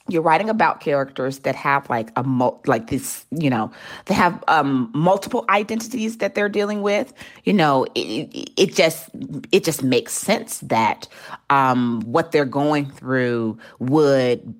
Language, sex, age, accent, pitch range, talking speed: English, female, 30-49, American, 125-185 Hz, 150 wpm